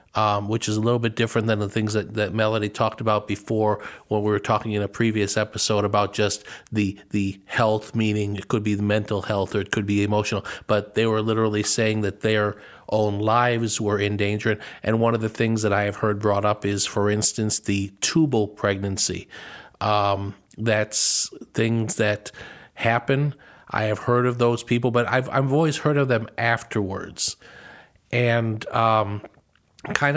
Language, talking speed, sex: English, 185 wpm, male